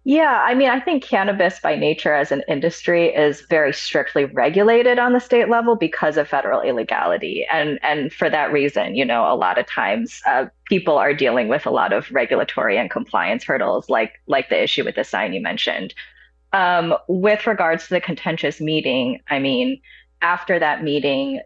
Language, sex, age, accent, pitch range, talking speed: English, female, 20-39, American, 145-235 Hz, 185 wpm